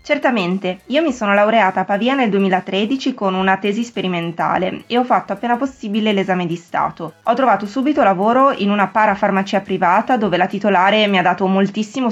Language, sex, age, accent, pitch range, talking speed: Italian, female, 20-39, native, 185-220 Hz, 180 wpm